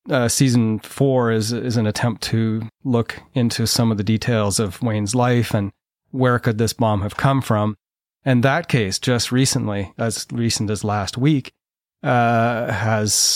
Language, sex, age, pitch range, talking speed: English, male, 30-49, 110-125 Hz, 165 wpm